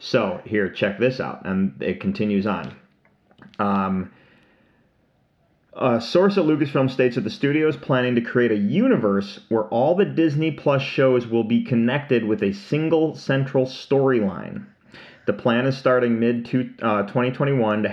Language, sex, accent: English, male, American